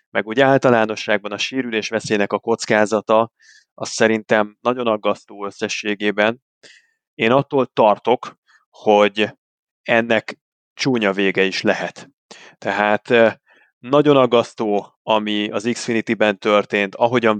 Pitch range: 100-125 Hz